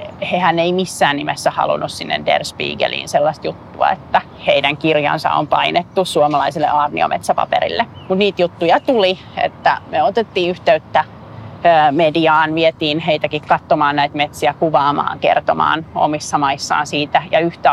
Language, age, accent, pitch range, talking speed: Finnish, 30-49, native, 155-190 Hz, 130 wpm